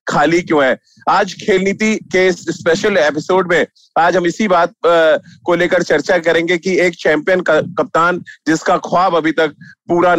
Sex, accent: male, native